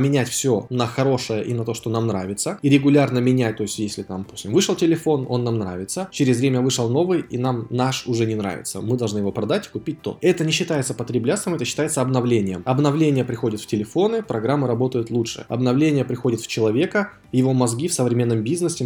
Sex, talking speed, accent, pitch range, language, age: male, 200 wpm, native, 115-145 Hz, Russian, 20-39